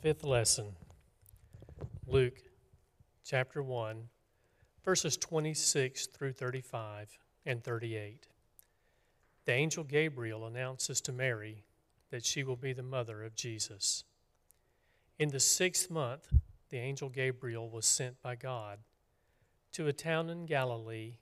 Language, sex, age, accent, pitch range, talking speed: English, male, 40-59, American, 110-140 Hz, 115 wpm